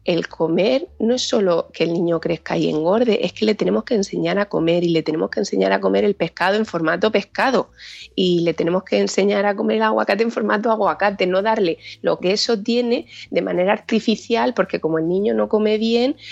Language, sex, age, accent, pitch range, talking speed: Spanish, female, 30-49, Spanish, 160-205 Hz, 215 wpm